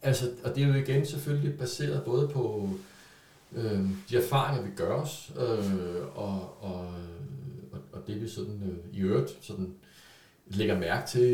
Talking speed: 160 wpm